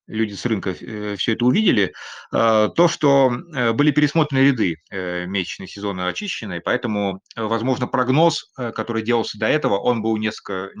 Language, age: Russian, 30-49